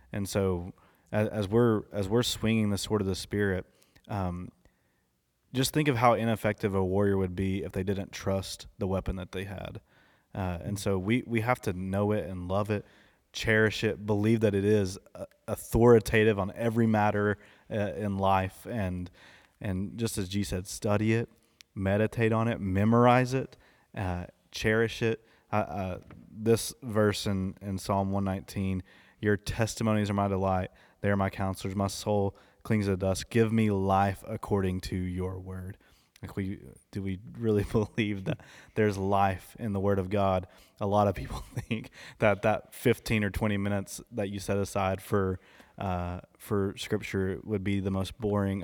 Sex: male